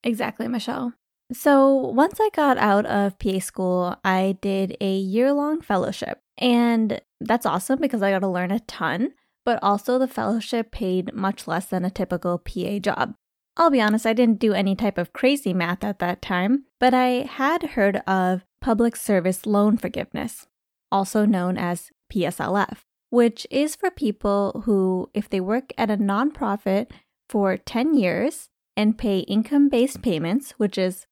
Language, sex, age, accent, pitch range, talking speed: English, female, 10-29, American, 195-255 Hz, 165 wpm